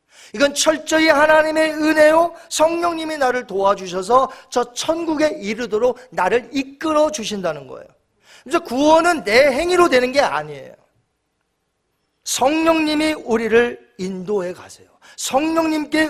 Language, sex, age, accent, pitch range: Korean, male, 40-59, native, 180-290 Hz